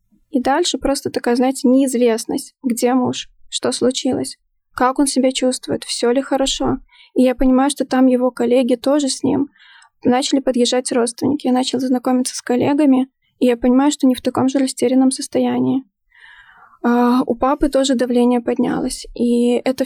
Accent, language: native, Russian